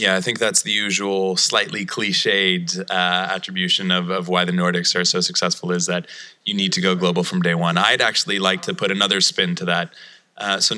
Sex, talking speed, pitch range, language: male, 215 wpm, 90-115 Hz, English